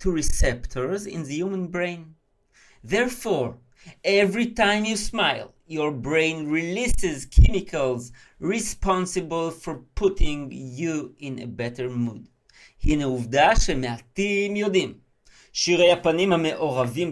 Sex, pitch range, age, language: male, 130-195 Hz, 50-69, Hebrew